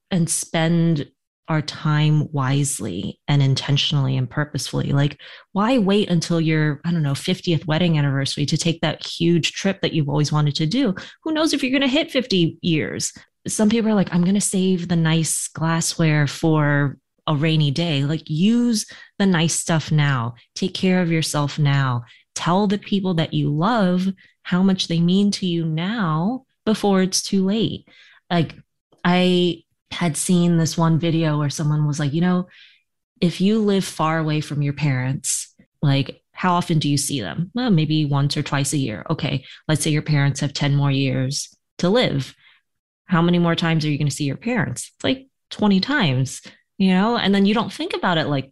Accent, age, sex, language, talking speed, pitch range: American, 20-39, female, English, 190 wpm, 150-190 Hz